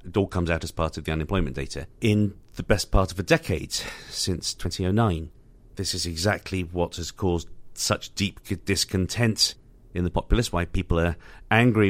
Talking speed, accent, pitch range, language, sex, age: 175 wpm, British, 85-110 Hz, English, male, 40-59